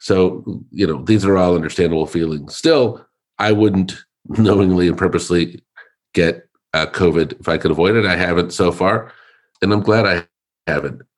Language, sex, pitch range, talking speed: English, male, 80-95 Hz, 165 wpm